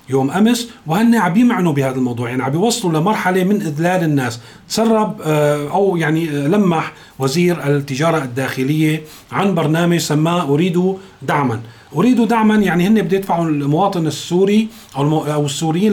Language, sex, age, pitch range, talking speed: Arabic, male, 40-59, 140-185 Hz, 135 wpm